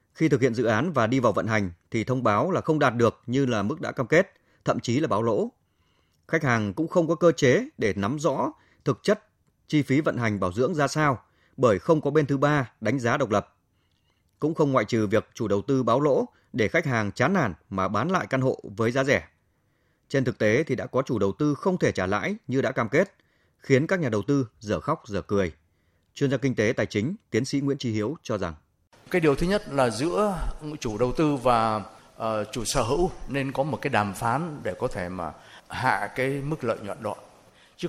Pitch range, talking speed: 105-150 Hz, 240 wpm